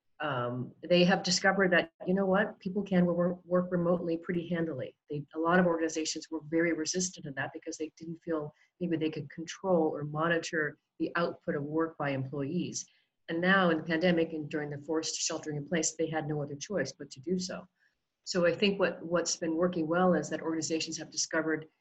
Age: 40-59